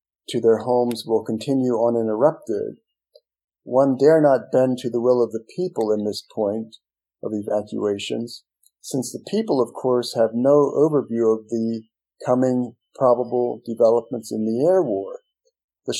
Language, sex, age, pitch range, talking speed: English, male, 50-69, 115-145 Hz, 145 wpm